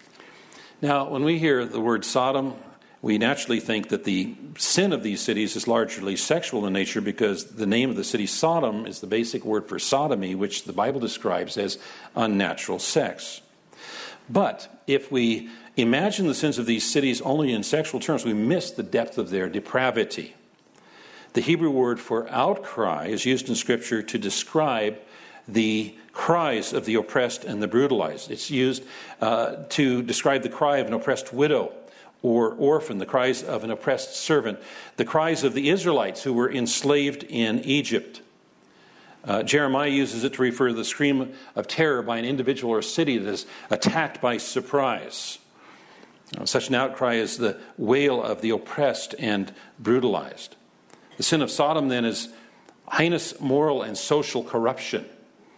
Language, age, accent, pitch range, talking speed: English, 50-69, American, 115-140 Hz, 165 wpm